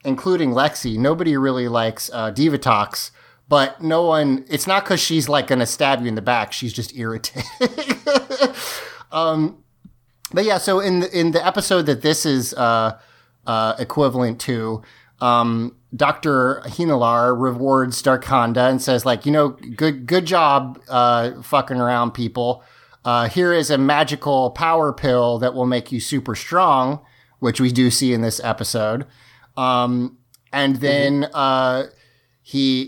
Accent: American